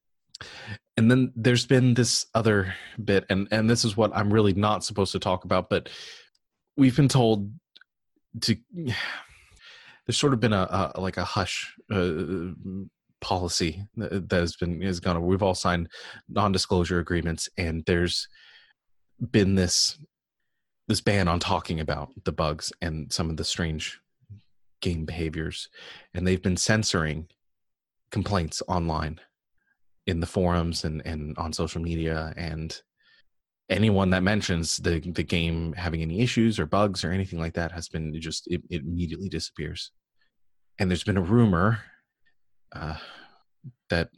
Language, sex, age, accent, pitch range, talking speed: English, male, 30-49, American, 85-105 Hz, 150 wpm